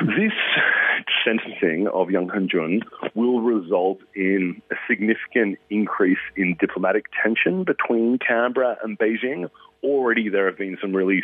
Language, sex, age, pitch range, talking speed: English, male, 40-59, 95-120 Hz, 130 wpm